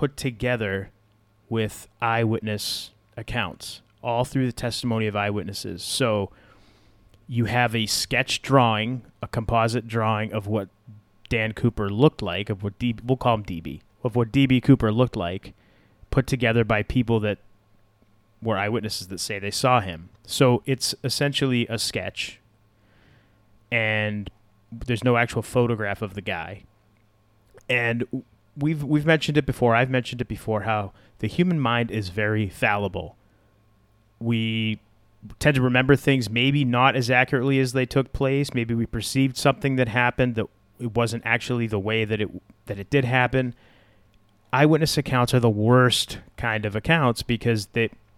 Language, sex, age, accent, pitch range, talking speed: English, male, 30-49, American, 105-125 Hz, 150 wpm